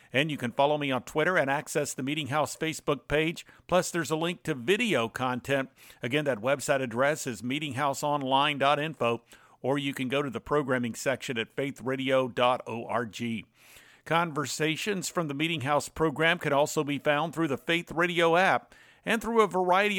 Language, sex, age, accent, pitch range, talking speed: English, male, 50-69, American, 140-170 Hz, 170 wpm